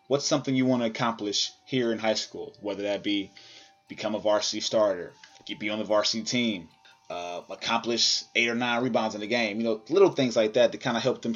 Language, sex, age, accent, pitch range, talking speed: English, male, 20-39, American, 105-125 Hz, 220 wpm